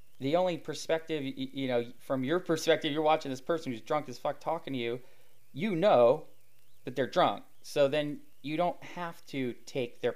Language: English